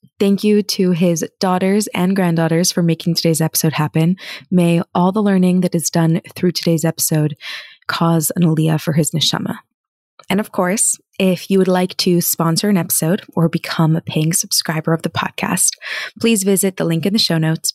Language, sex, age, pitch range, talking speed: English, female, 20-39, 165-200 Hz, 185 wpm